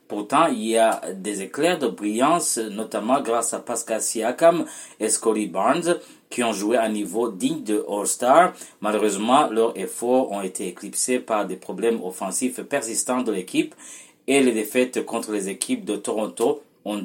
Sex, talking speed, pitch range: male, 165 wpm, 110-150 Hz